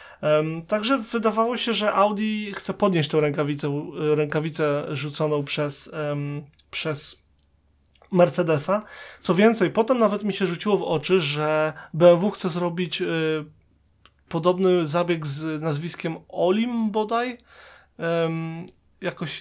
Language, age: Polish, 30-49